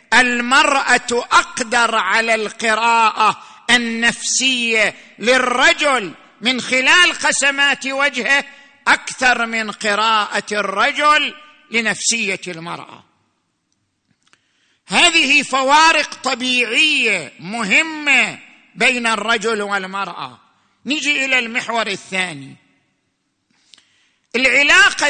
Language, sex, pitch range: Arabic, male, 220-260 Hz